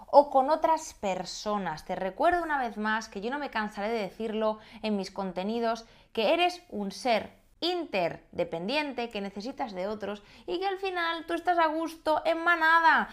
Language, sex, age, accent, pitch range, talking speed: Spanish, female, 20-39, Spanish, 205-285 Hz, 175 wpm